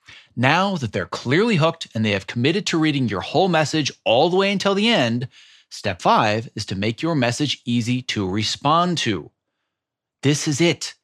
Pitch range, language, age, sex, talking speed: 120-170 Hz, English, 30-49, male, 185 wpm